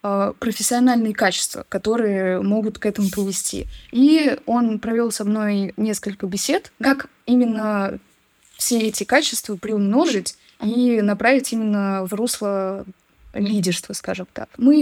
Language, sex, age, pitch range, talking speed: Russian, female, 20-39, 200-245 Hz, 115 wpm